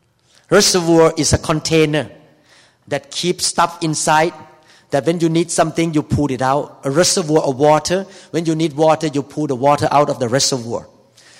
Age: 50-69